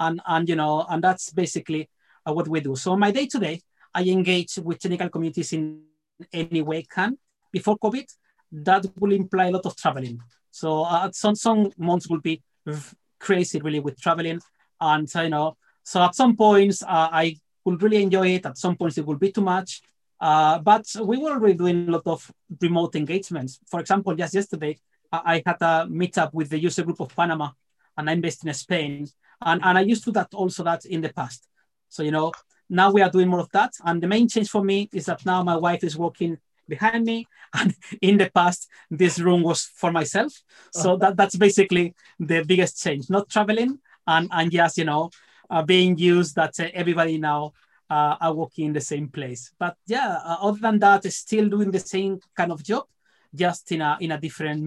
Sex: male